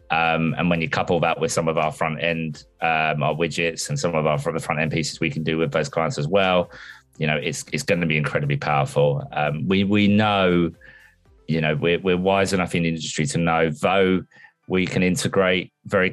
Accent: British